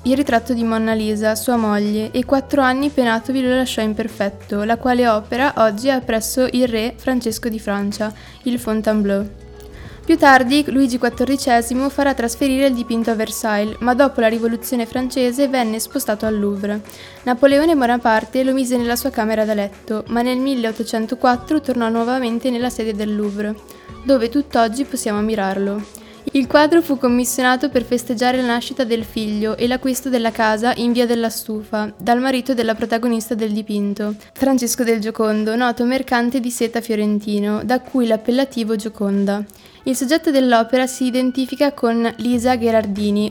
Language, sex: Italian, female